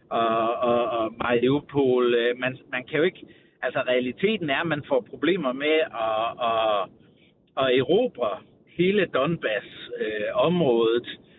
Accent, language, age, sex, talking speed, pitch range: native, Danish, 60-79, male, 110 wpm, 120-160 Hz